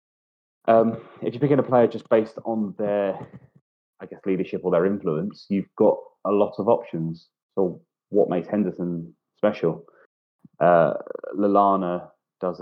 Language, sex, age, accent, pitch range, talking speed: English, male, 20-39, British, 80-100 Hz, 145 wpm